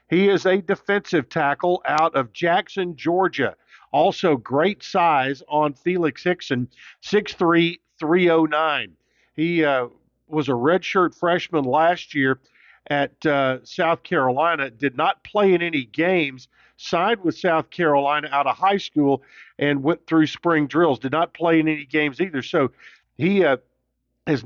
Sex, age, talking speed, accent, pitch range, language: male, 50-69, 145 wpm, American, 140-170 Hz, English